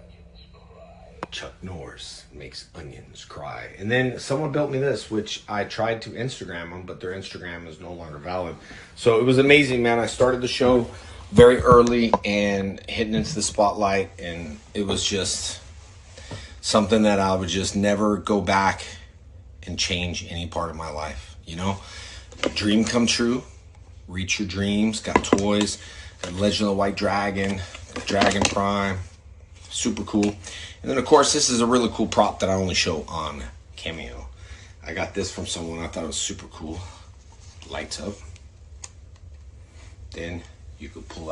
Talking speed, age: 165 wpm, 30-49